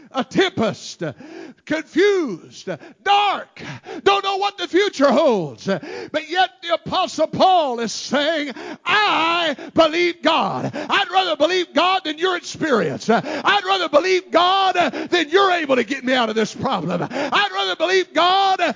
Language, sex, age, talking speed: English, male, 50-69, 145 wpm